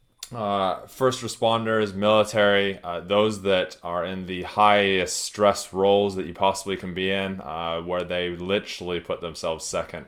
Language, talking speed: English, 155 wpm